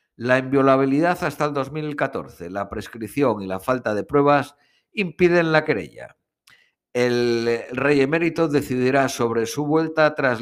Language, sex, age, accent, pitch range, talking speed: Spanish, male, 50-69, Spanish, 120-155 Hz, 130 wpm